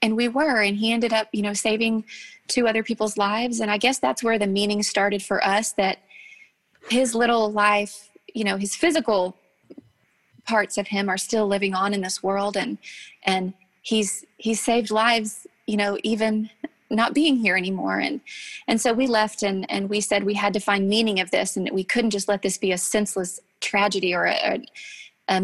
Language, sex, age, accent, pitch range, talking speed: English, female, 20-39, American, 190-220 Hz, 205 wpm